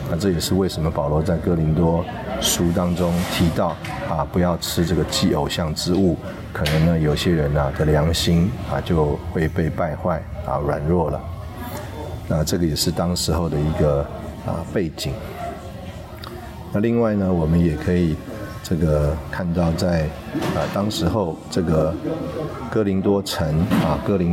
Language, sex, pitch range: Chinese, male, 80-95 Hz